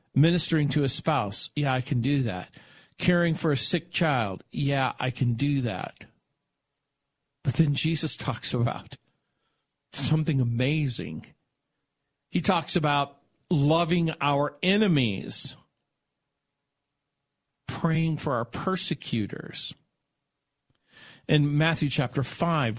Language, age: English, 50-69